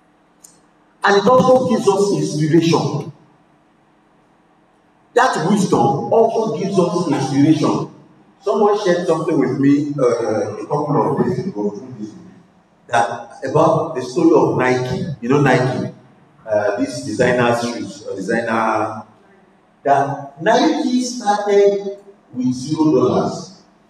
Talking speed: 110 wpm